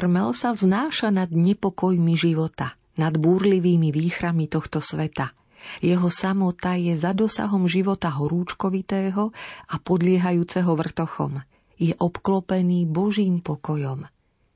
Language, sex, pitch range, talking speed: Slovak, female, 160-195 Hz, 105 wpm